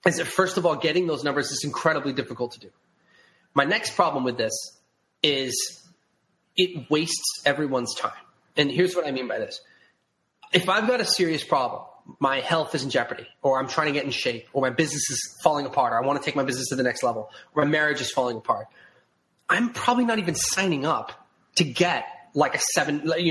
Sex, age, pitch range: male, 20-39, 140-180 Hz